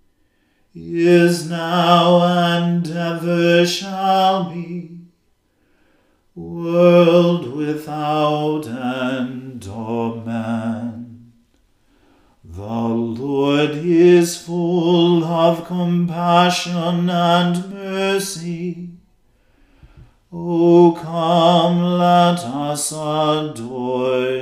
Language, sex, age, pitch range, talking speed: English, male, 40-59, 125-170 Hz, 60 wpm